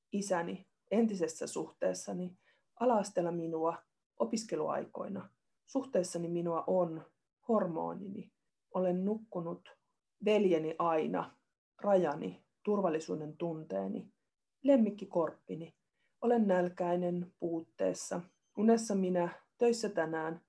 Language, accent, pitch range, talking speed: Finnish, native, 170-220 Hz, 75 wpm